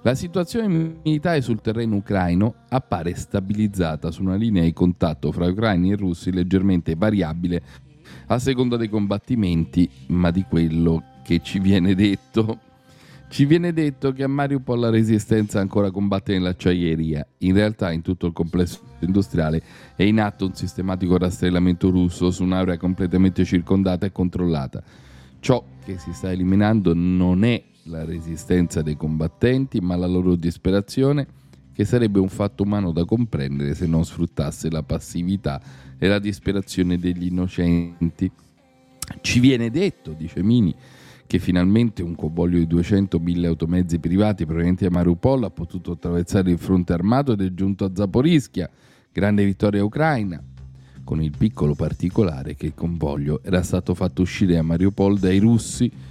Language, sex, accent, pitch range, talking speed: Italian, male, native, 85-105 Hz, 150 wpm